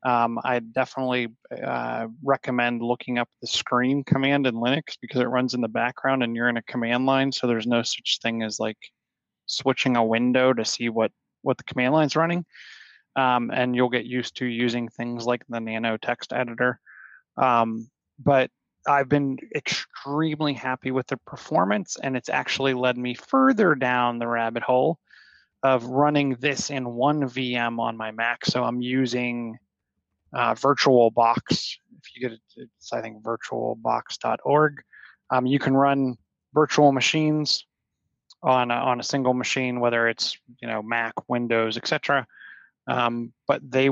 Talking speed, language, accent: 165 wpm, English, American